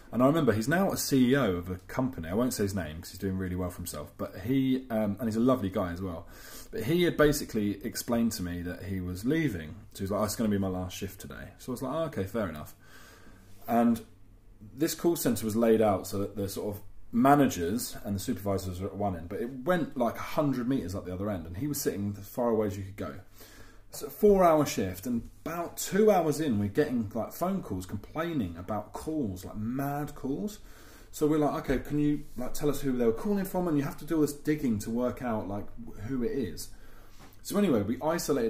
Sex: male